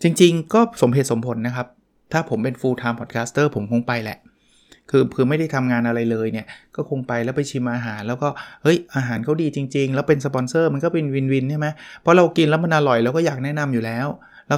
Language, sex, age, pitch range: Thai, male, 20-39, 115-150 Hz